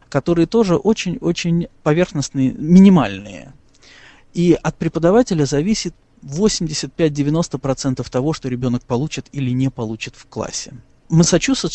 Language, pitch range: Russian, 130-180 Hz